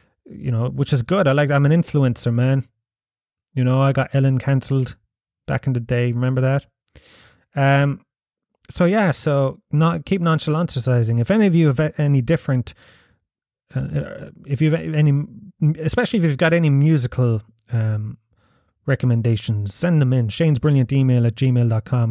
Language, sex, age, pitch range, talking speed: English, male, 30-49, 115-145 Hz, 155 wpm